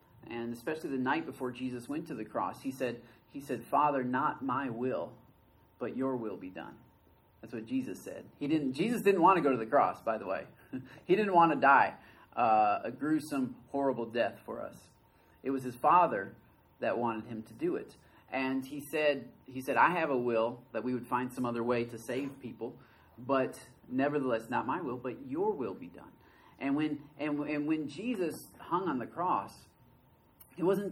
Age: 30-49